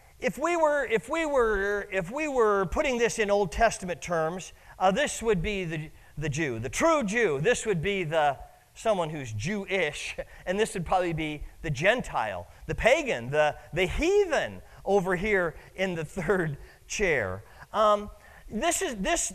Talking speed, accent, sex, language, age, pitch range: 170 wpm, American, male, English, 40-59, 155-240 Hz